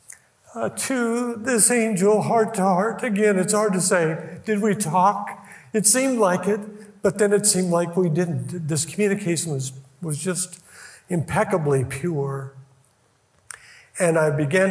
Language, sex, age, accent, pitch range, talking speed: English, male, 50-69, American, 145-220 Hz, 145 wpm